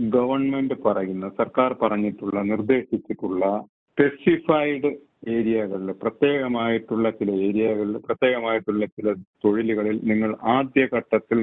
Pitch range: 105-115 Hz